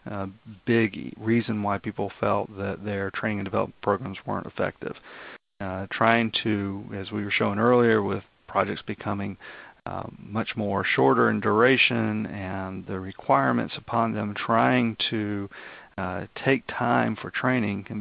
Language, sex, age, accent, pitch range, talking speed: English, male, 40-59, American, 100-115 Hz, 145 wpm